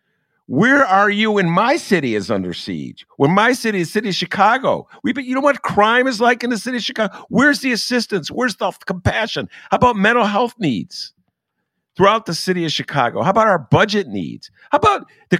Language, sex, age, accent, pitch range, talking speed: English, male, 50-69, American, 155-210 Hz, 205 wpm